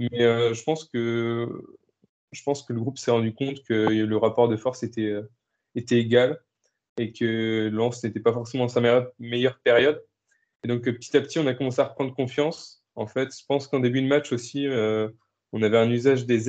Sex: male